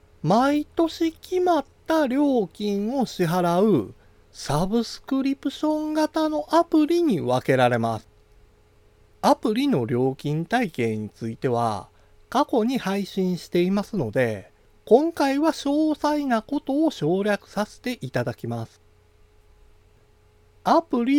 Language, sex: Japanese, male